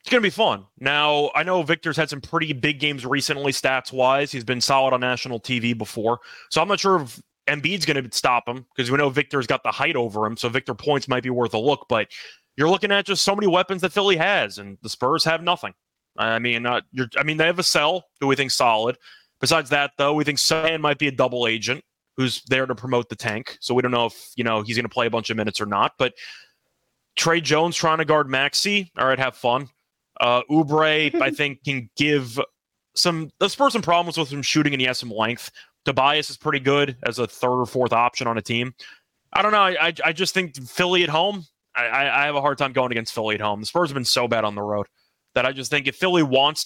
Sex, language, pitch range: male, English, 125-160 Hz